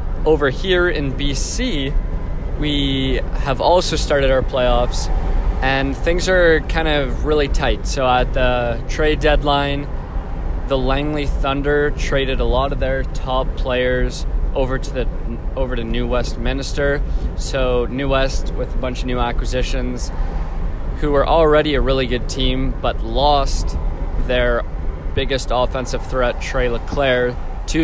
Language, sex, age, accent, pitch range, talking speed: English, male, 20-39, American, 110-140 Hz, 140 wpm